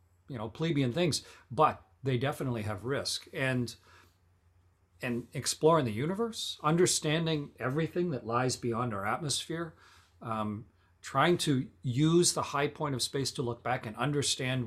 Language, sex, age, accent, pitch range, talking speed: English, male, 40-59, American, 105-130 Hz, 145 wpm